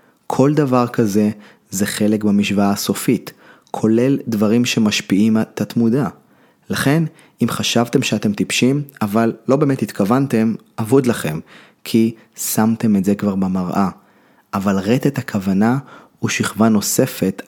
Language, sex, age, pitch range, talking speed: Hebrew, male, 30-49, 100-125 Hz, 120 wpm